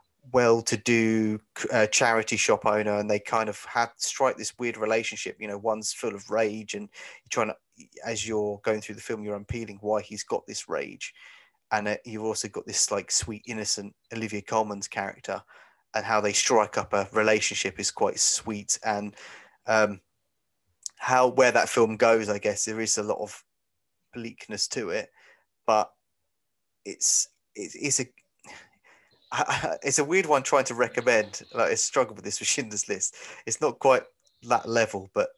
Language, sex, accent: English, male, British